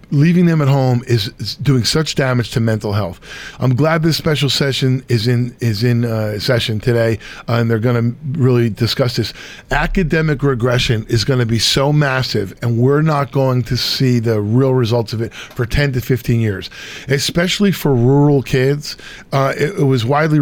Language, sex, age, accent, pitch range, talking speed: English, male, 40-59, American, 120-145 Hz, 190 wpm